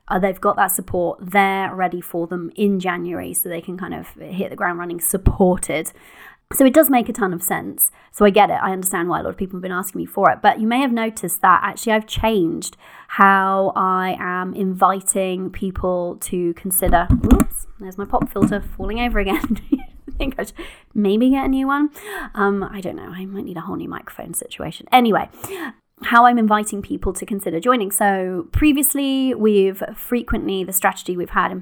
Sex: female